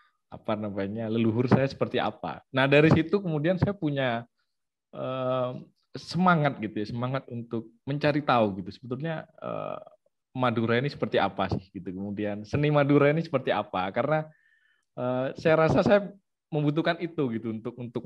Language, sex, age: Indonesian, male, 20-39